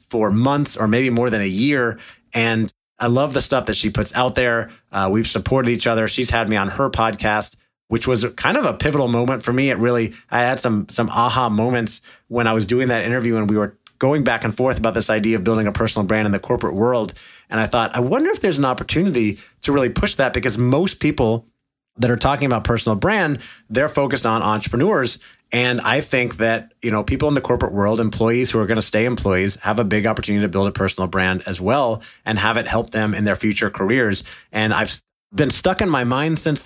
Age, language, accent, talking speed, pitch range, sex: 30-49, English, American, 230 wpm, 110-125 Hz, male